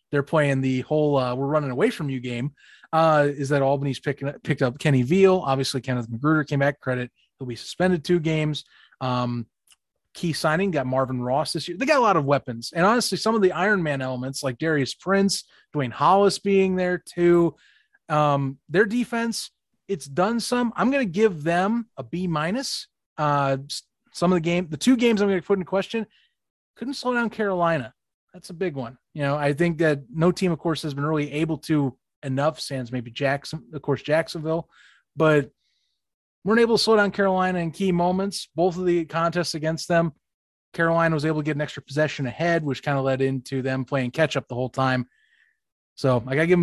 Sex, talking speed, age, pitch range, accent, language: male, 200 wpm, 30-49, 140-195 Hz, American, English